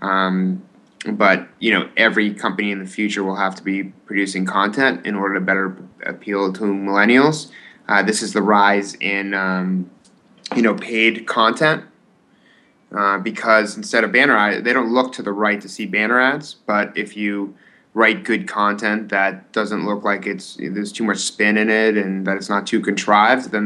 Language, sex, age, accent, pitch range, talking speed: English, male, 20-39, American, 100-110 Hz, 185 wpm